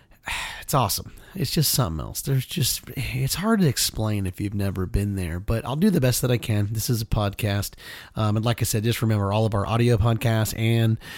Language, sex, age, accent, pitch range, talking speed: English, male, 30-49, American, 100-115 Hz, 225 wpm